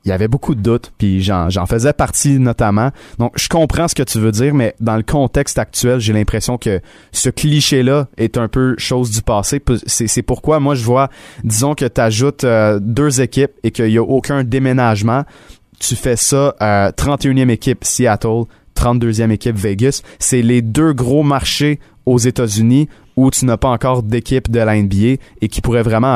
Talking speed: 190 wpm